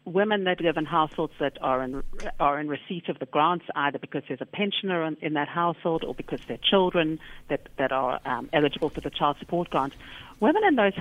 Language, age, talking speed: English, 50-69, 220 wpm